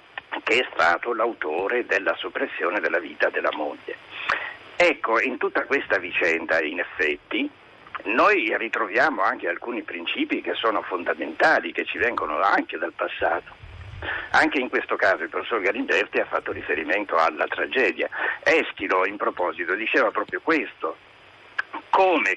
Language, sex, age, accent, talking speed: Italian, male, 60-79, native, 135 wpm